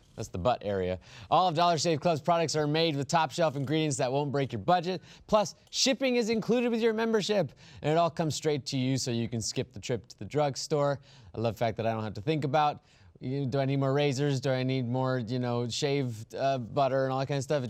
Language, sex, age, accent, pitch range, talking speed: English, male, 20-39, American, 125-175 Hz, 260 wpm